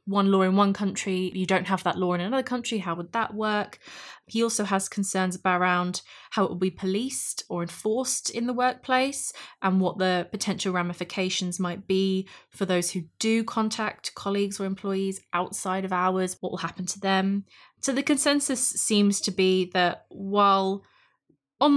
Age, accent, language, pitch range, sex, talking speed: 20-39, British, English, 180-210 Hz, female, 175 wpm